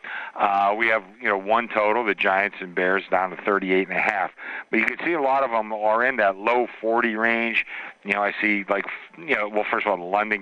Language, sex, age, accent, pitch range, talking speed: English, male, 50-69, American, 95-115 Hz, 255 wpm